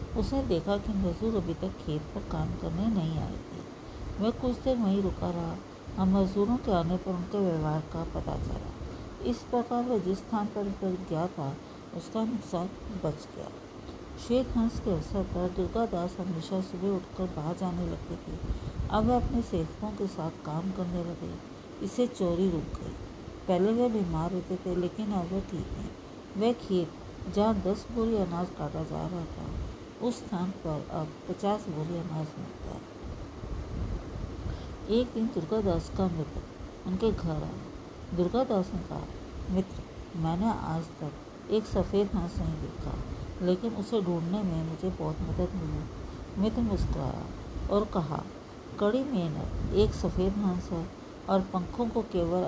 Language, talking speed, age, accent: Hindi, 155 wpm, 50-69, native